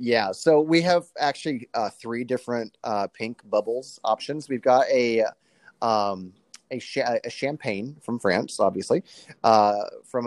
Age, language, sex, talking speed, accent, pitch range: 30-49, English, male, 145 wpm, American, 105-130 Hz